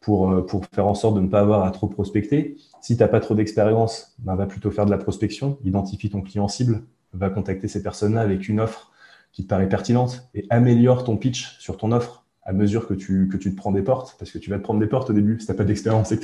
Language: French